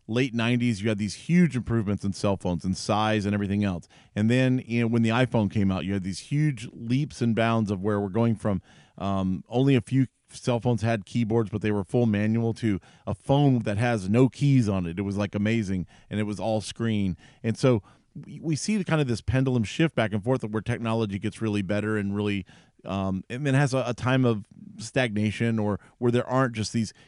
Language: English